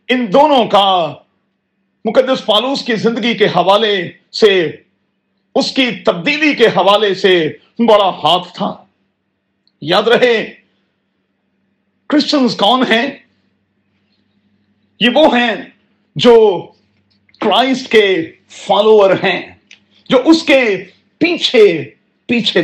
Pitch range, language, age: 200-255 Hz, Urdu, 50-69